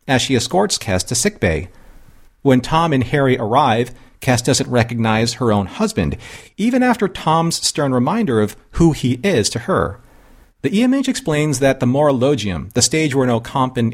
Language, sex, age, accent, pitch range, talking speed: English, male, 40-59, American, 110-155 Hz, 170 wpm